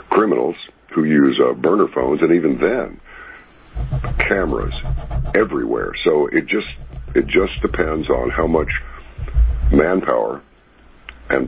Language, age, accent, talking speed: English, 60-79, American, 115 wpm